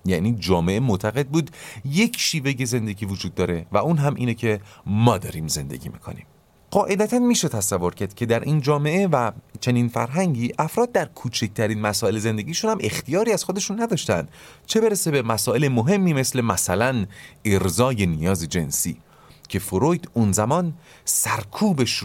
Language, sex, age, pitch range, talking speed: Persian, male, 40-59, 95-145 Hz, 150 wpm